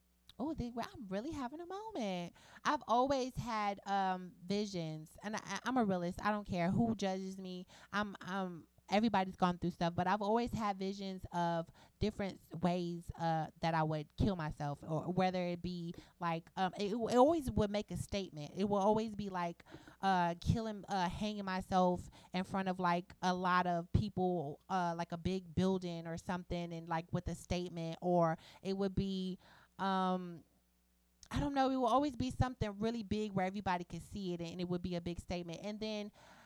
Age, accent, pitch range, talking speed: 30-49, American, 175-210 Hz, 190 wpm